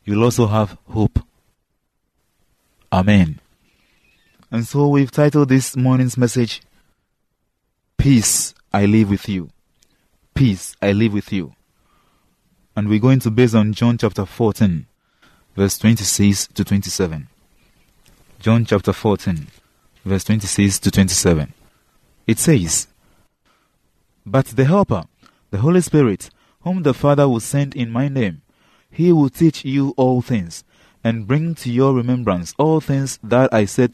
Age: 30-49